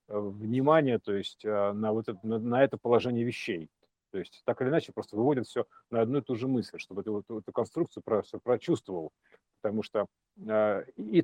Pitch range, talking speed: 105-140 Hz, 180 wpm